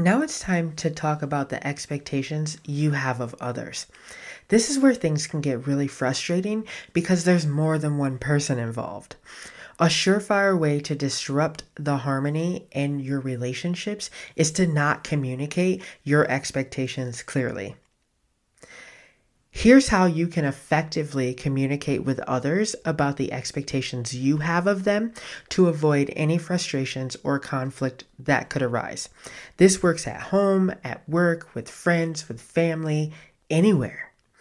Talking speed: 140 wpm